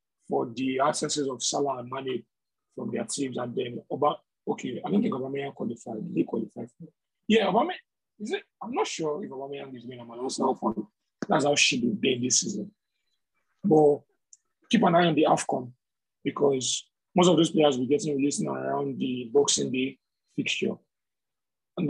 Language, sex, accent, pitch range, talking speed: English, male, Nigerian, 135-165 Hz, 190 wpm